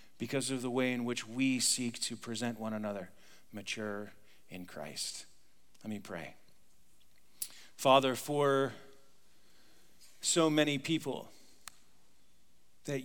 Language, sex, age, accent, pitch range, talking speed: English, male, 40-59, American, 115-150 Hz, 110 wpm